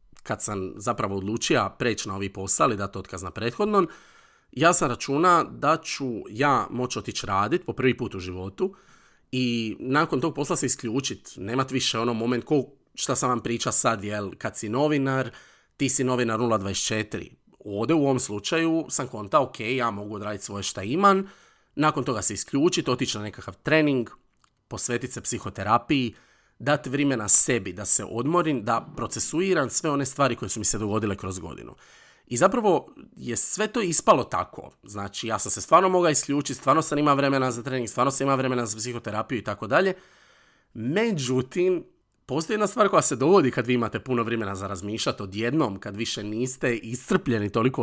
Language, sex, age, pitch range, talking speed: Croatian, male, 40-59, 105-140 Hz, 180 wpm